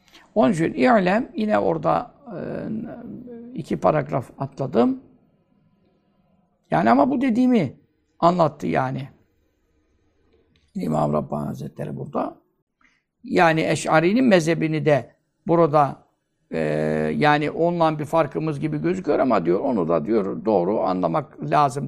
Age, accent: 60-79, native